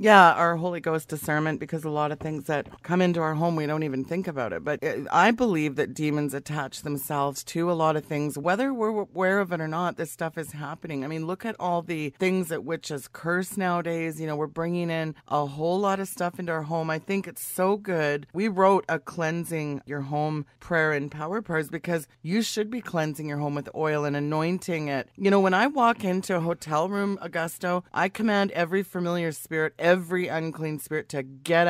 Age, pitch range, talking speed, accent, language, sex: 30-49, 155-185 Hz, 220 wpm, American, English, female